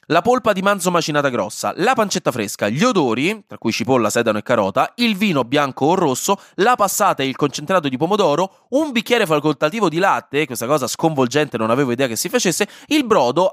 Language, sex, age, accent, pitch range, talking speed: Italian, male, 20-39, native, 125-200 Hz, 200 wpm